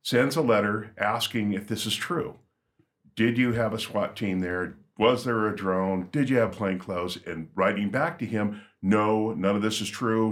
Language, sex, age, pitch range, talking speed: English, male, 50-69, 95-110 Hz, 205 wpm